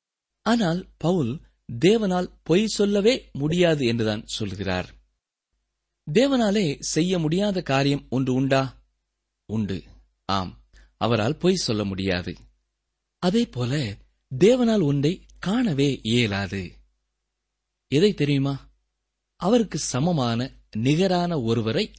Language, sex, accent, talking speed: Tamil, male, native, 85 wpm